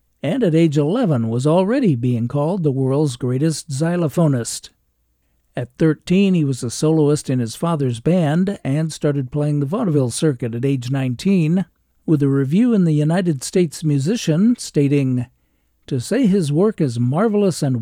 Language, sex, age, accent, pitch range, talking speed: English, male, 60-79, American, 130-170 Hz, 160 wpm